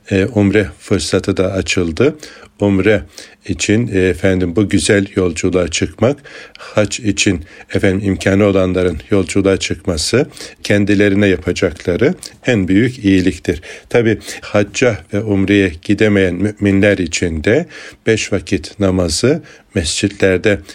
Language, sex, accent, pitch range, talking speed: Turkish, male, native, 95-105 Hz, 100 wpm